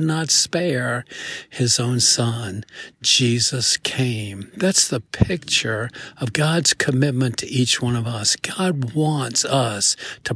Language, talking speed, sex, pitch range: English, 125 wpm, male, 120-155 Hz